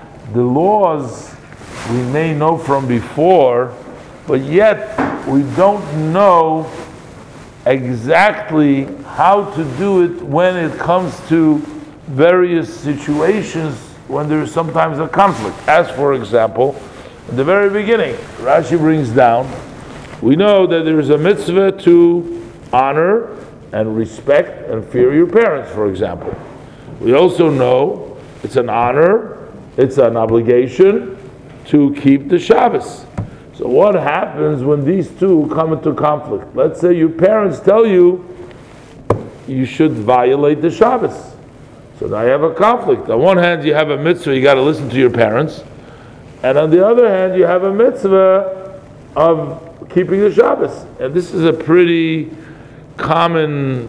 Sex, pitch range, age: male, 140-180 Hz, 50-69